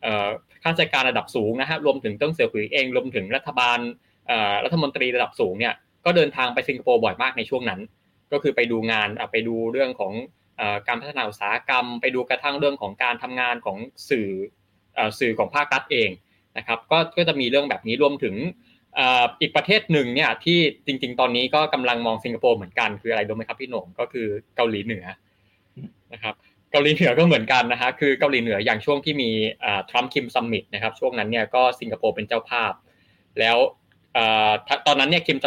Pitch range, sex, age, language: 115-140 Hz, male, 20-39, Thai